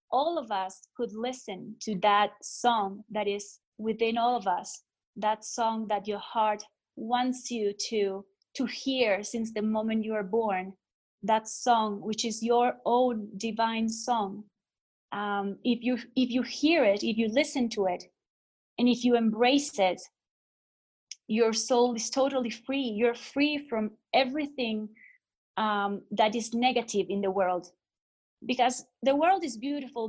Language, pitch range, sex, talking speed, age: English, 210-250 Hz, female, 150 wpm, 30-49